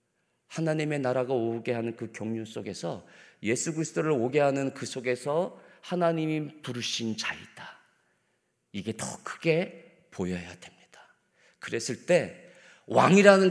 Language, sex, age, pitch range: Korean, male, 40-59, 130-205 Hz